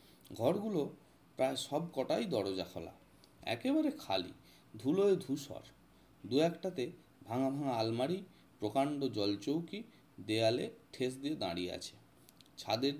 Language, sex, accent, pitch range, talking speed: Bengali, male, native, 110-160 Hz, 45 wpm